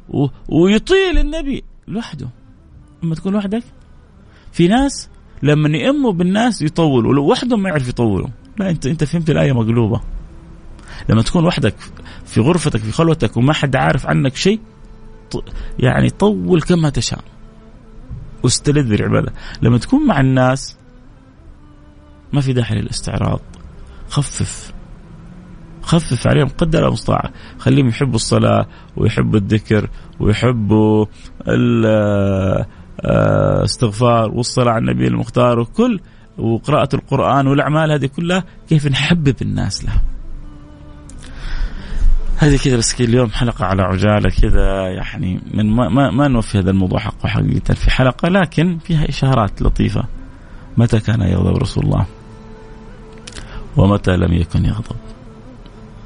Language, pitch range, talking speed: Arabic, 105-145 Hz, 115 wpm